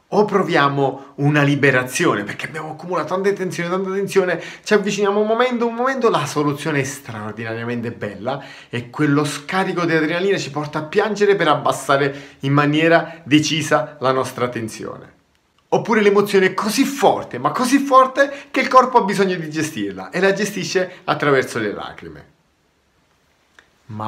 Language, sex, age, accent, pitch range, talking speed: Italian, male, 30-49, native, 125-195 Hz, 150 wpm